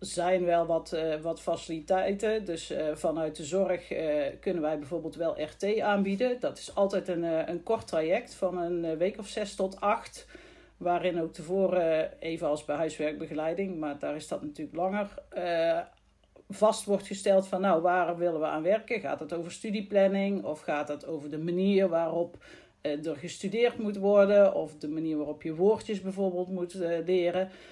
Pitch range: 155-195 Hz